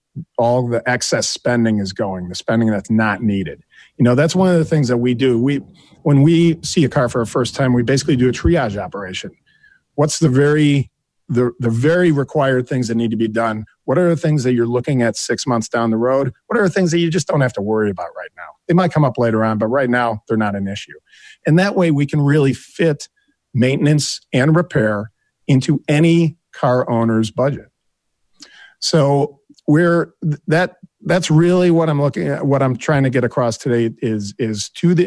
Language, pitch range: English, 115-155 Hz